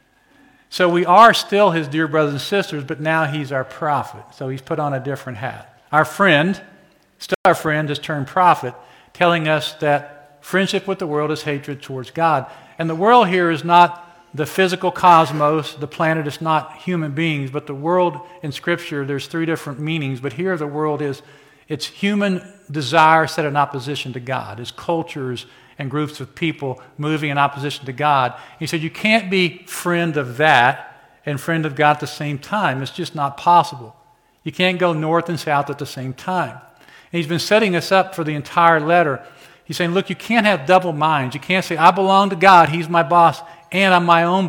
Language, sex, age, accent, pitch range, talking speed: English, male, 50-69, American, 145-175 Hz, 200 wpm